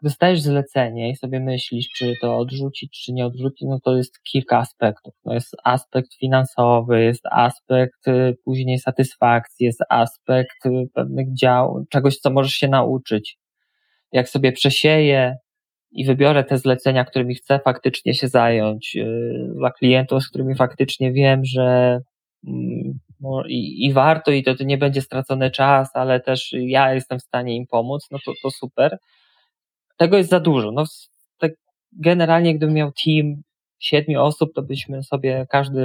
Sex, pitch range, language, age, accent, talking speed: male, 130-145 Hz, Polish, 20-39, native, 150 wpm